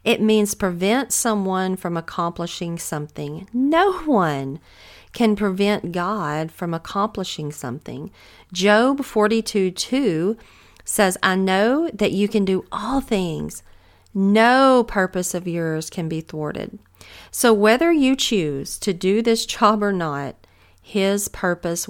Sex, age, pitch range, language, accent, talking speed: female, 40-59, 160-215 Hz, English, American, 125 wpm